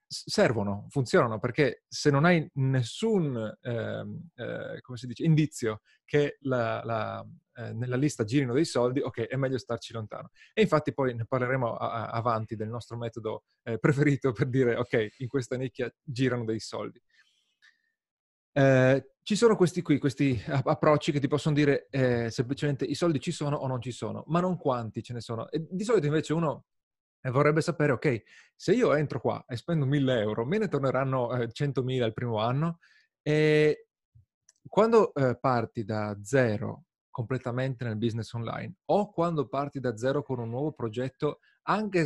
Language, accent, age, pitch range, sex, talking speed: Italian, native, 30-49, 115-150 Hz, male, 160 wpm